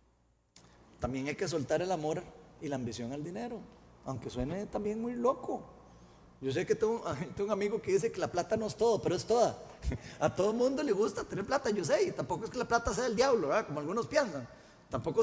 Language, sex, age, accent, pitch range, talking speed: Spanish, male, 30-49, Mexican, 160-245 Hz, 225 wpm